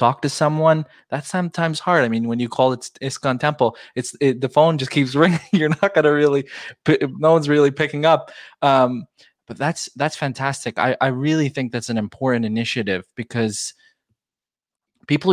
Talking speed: 180 wpm